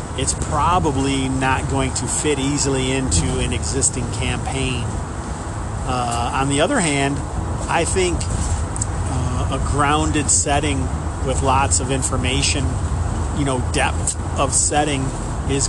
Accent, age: American, 40-59